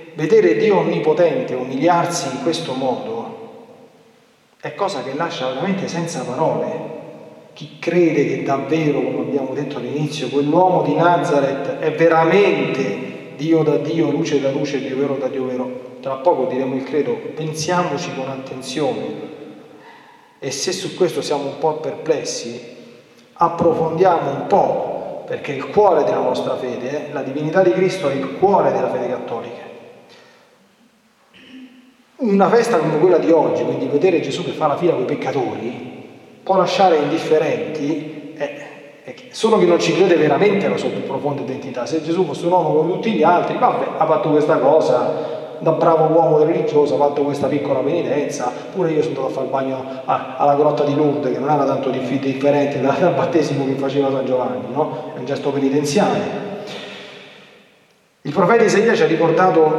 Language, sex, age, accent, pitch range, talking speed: Italian, male, 40-59, native, 140-180 Hz, 165 wpm